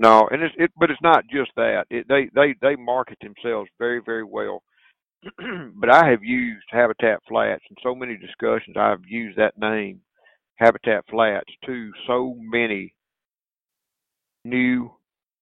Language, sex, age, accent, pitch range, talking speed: English, male, 50-69, American, 110-130 Hz, 150 wpm